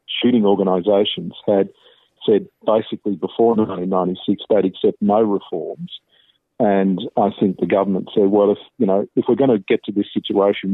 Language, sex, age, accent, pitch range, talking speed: English, male, 50-69, Australian, 95-115 Hz, 150 wpm